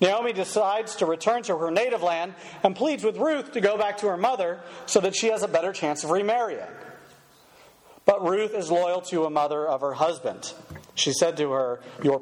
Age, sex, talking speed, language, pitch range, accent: 40-59, male, 205 wpm, English, 125-185 Hz, American